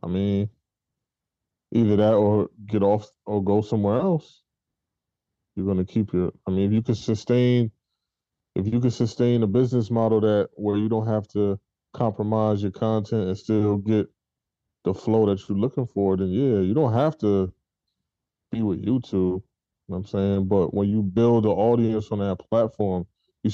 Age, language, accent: 20-39, English, American